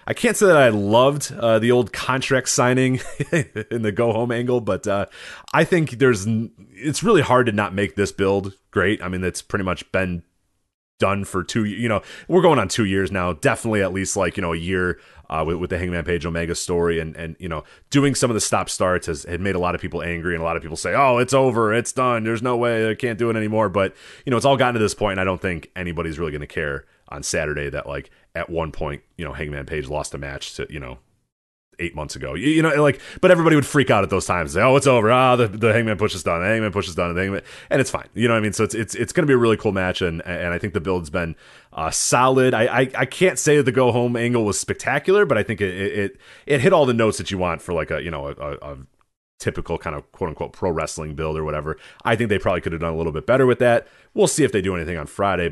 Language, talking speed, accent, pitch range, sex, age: English, 280 wpm, American, 85-120 Hz, male, 30-49